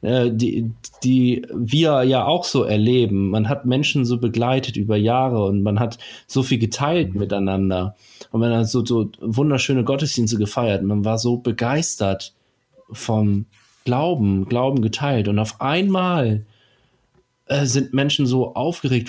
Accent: German